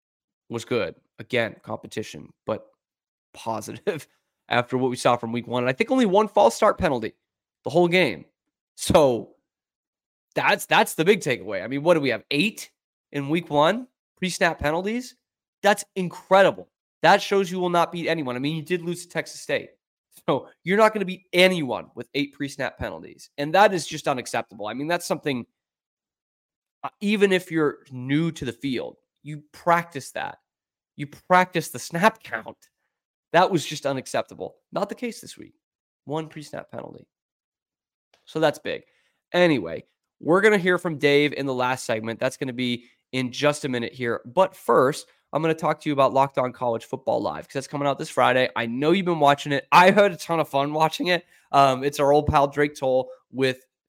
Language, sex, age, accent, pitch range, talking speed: English, male, 20-39, American, 135-180 Hz, 190 wpm